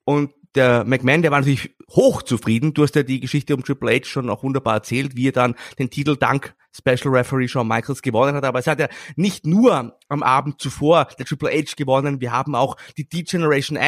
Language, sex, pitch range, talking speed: German, male, 135-165 Hz, 210 wpm